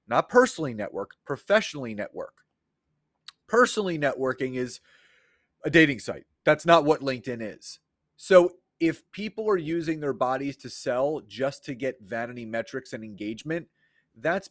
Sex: male